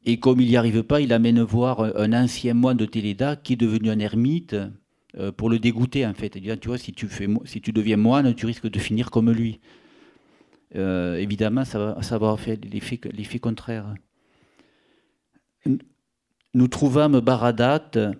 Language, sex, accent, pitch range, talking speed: French, male, French, 110-130 Hz, 180 wpm